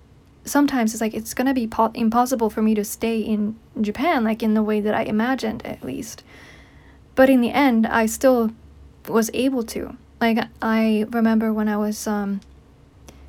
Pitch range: 215-250 Hz